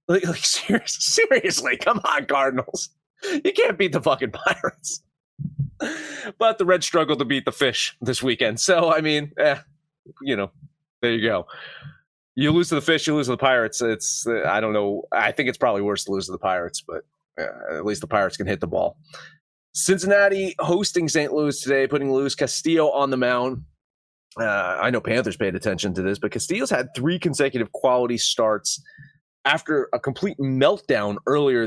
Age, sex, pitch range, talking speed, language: 30-49, male, 110-155 Hz, 185 wpm, English